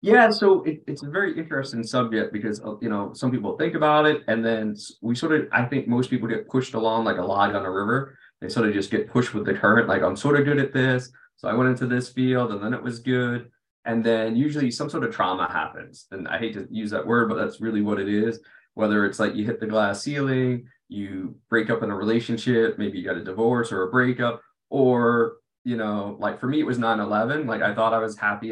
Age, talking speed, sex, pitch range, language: 20-39, 250 wpm, male, 105-125 Hz, English